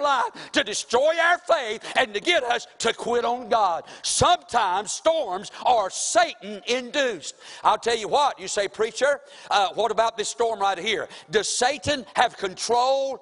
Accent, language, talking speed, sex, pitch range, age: American, English, 160 wpm, male, 200-285 Hz, 60-79